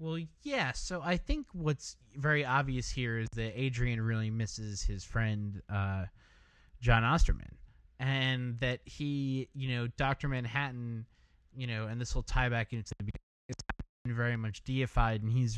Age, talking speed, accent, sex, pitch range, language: 20-39, 155 wpm, American, male, 110-135 Hz, English